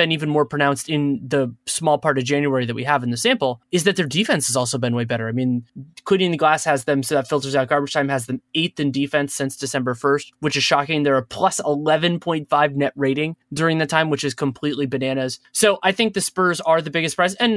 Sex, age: male, 20-39